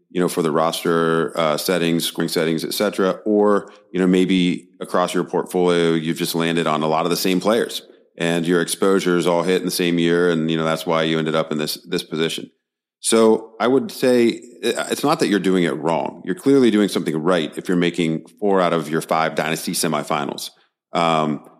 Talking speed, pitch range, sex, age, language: 210 wpm, 85-100 Hz, male, 30-49, English